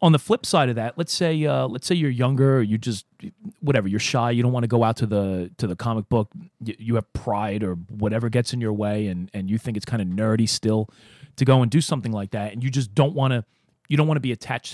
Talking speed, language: 275 wpm, English